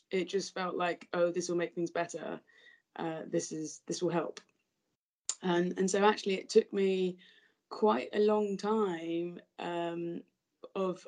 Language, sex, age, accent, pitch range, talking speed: English, female, 20-39, British, 165-205 Hz, 155 wpm